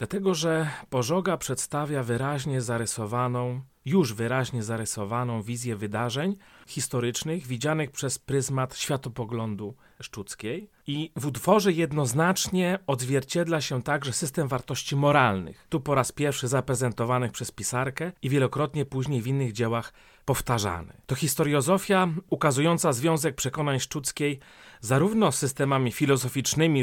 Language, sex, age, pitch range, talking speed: Polish, male, 40-59, 125-160 Hz, 115 wpm